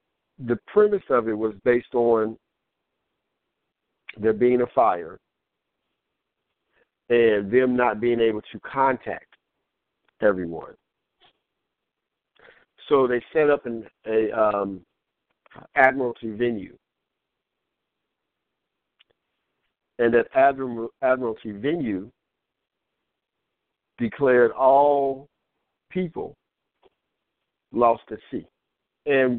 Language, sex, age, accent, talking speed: English, male, 50-69, American, 80 wpm